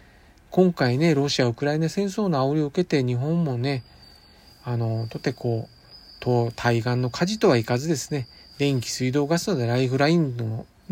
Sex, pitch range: male, 125-185 Hz